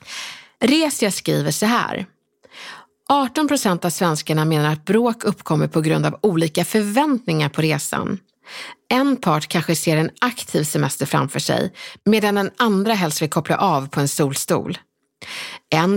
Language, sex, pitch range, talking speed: Swedish, female, 170-245 Hz, 145 wpm